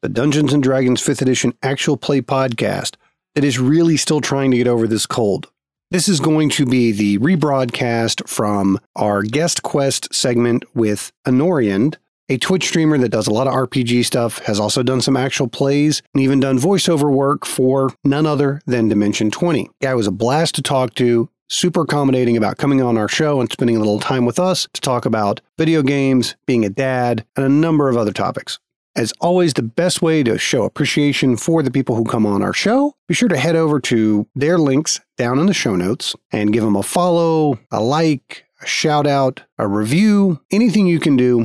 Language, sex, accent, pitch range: English, male, American, 115-150 Hz